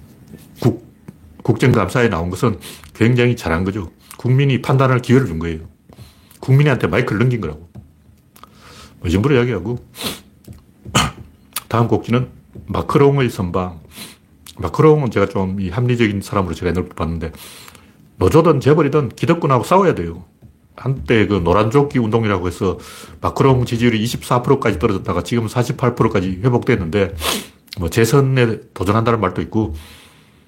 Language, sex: Korean, male